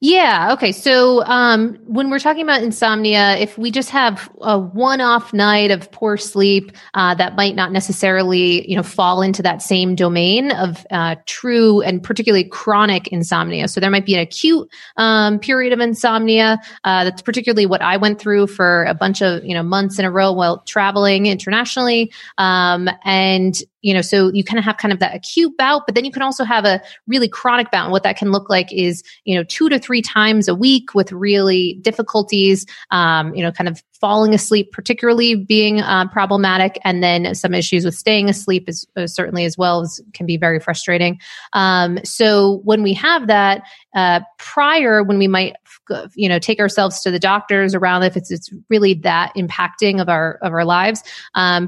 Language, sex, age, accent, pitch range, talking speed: English, female, 30-49, American, 180-220 Hz, 195 wpm